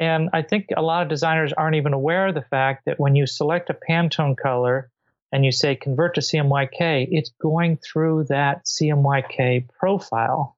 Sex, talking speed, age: male, 180 wpm, 40-59